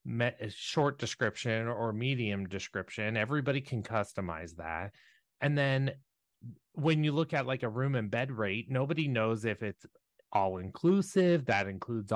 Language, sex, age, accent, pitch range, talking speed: English, male, 30-49, American, 105-140 Hz, 150 wpm